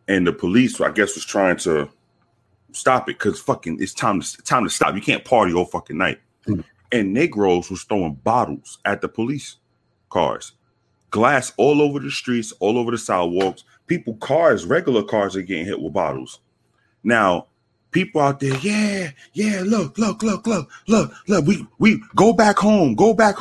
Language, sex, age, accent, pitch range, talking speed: English, male, 30-49, American, 105-160 Hz, 180 wpm